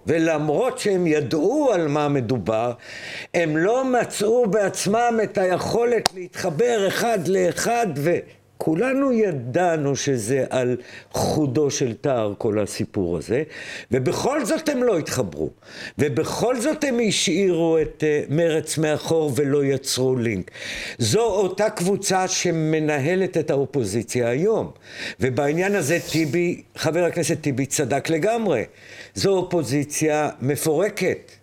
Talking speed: 115 wpm